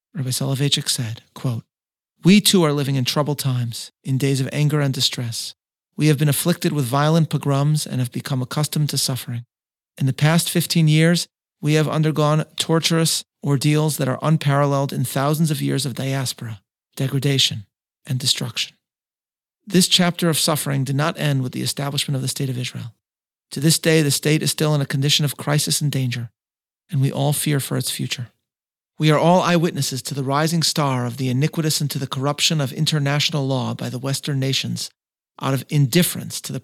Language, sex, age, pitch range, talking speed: English, male, 40-59, 130-155 Hz, 185 wpm